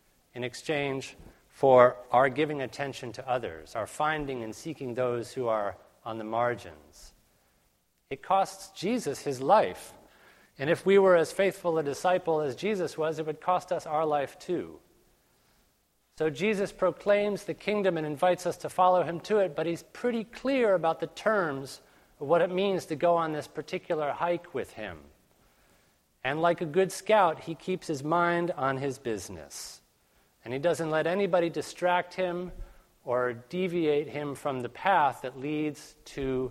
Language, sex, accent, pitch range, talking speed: English, male, American, 125-175 Hz, 165 wpm